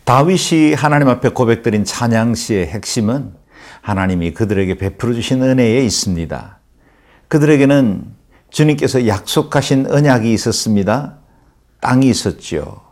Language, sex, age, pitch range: Korean, male, 50-69, 105-135 Hz